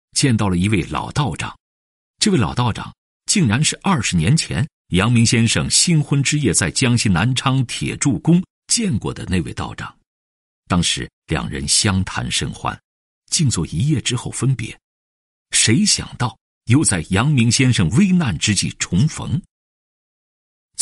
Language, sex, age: Chinese, male, 50-69